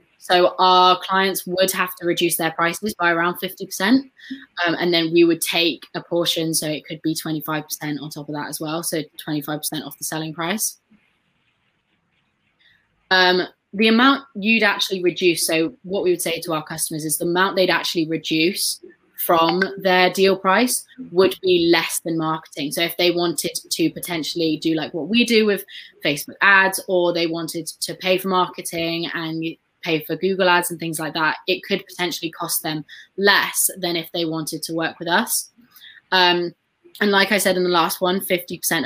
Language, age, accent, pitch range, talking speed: English, 20-39, British, 165-190 Hz, 185 wpm